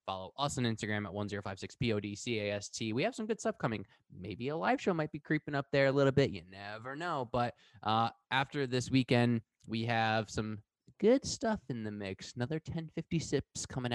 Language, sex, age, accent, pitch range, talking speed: English, male, 20-39, American, 110-140 Hz, 220 wpm